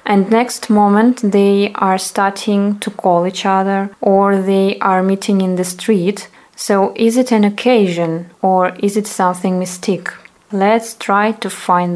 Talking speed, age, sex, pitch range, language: 155 wpm, 20-39, female, 195-230 Hz, English